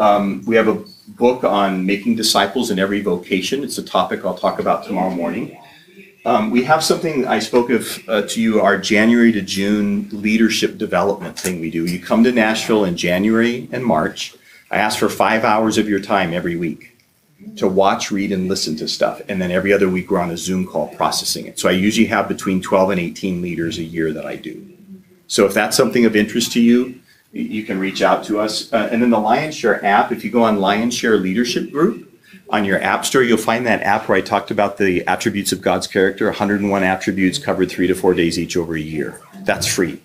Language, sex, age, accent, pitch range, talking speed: English, male, 40-59, American, 95-120 Hz, 225 wpm